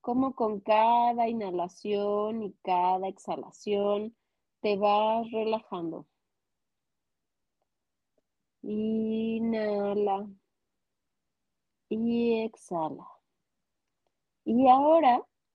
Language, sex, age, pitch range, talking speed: Spanish, female, 30-49, 200-255 Hz, 60 wpm